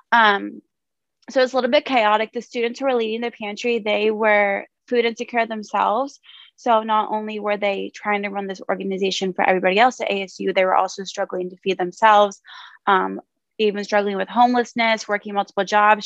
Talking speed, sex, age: 185 wpm, female, 20-39